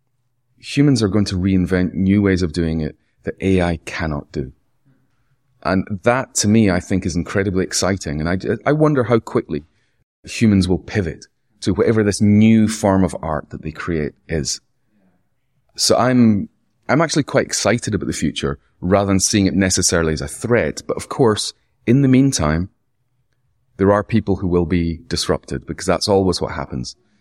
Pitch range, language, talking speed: 85-115 Hz, English, 170 wpm